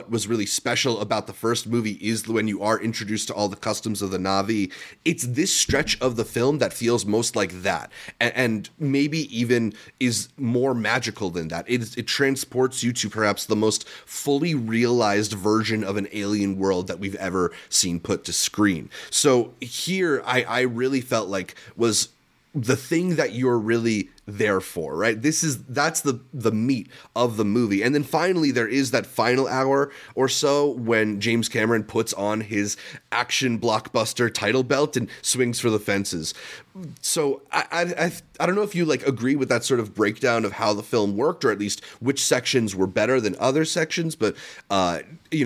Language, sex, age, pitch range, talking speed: English, male, 30-49, 105-135 Hz, 190 wpm